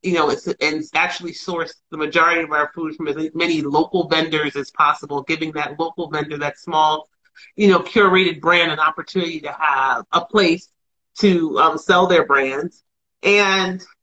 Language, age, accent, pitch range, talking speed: English, 40-59, American, 155-190 Hz, 175 wpm